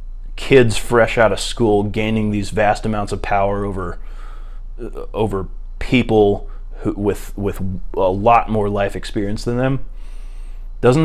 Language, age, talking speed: English, 20-39, 130 wpm